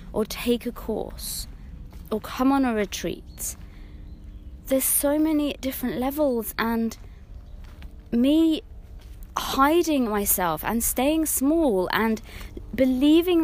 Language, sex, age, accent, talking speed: English, female, 20-39, British, 105 wpm